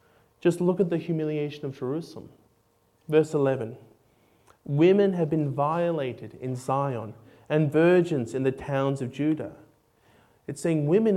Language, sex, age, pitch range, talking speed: English, male, 30-49, 120-180 Hz, 135 wpm